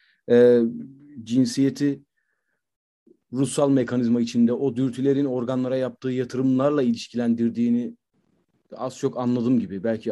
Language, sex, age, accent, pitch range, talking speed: Turkish, male, 40-59, native, 115-145 Hz, 90 wpm